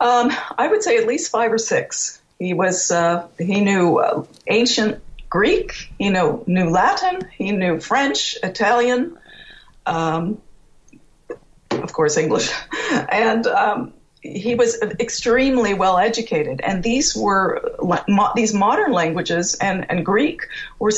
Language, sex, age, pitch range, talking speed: English, female, 50-69, 190-250 Hz, 135 wpm